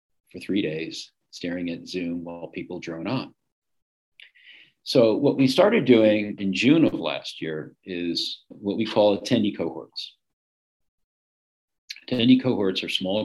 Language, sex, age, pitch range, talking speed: English, male, 50-69, 85-105 Hz, 135 wpm